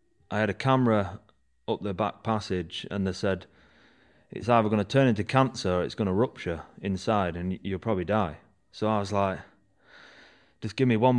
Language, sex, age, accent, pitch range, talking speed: English, male, 30-49, British, 100-120 Hz, 195 wpm